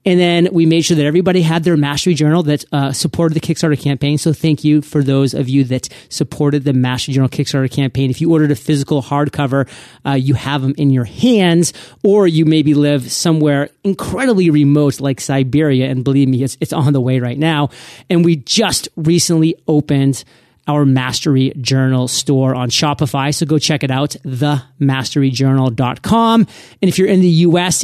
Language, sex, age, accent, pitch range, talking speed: English, male, 30-49, American, 135-165 Hz, 185 wpm